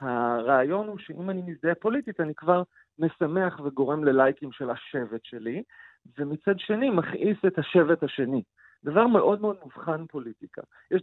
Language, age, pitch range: Hebrew, 40-59, 150-205 Hz